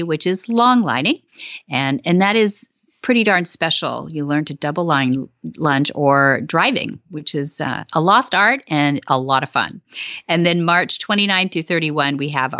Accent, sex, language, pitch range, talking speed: American, female, English, 140-190 Hz, 175 wpm